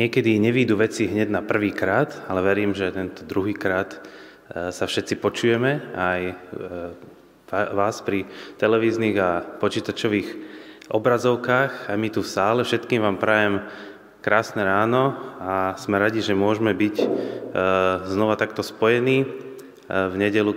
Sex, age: male, 20-39